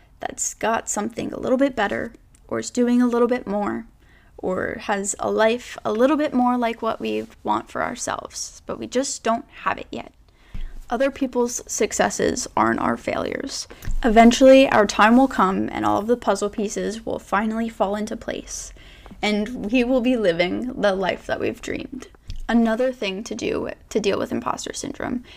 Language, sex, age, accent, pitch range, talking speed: English, female, 10-29, American, 205-255 Hz, 180 wpm